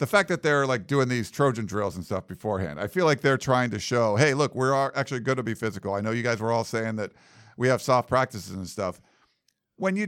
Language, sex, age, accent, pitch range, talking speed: English, male, 50-69, American, 115-155 Hz, 255 wpm